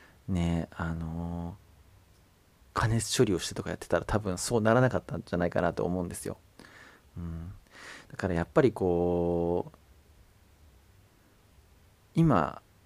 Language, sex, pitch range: Japanese, male, 85-110 Hz